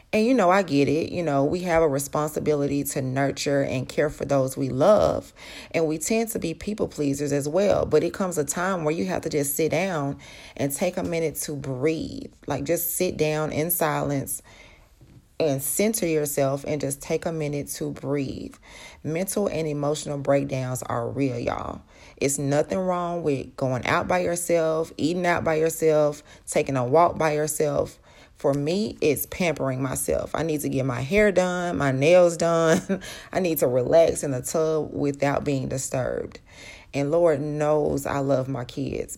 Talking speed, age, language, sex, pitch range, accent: 180 wpm, 40-59, English, female, 140-165 Hz, American